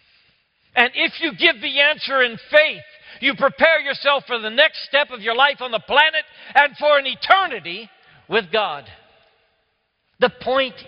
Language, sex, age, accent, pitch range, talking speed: English, male, 60-79, American, 135-220 Hz, 160 wpm